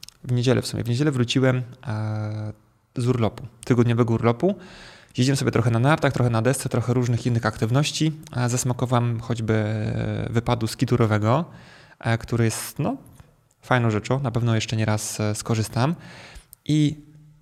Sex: male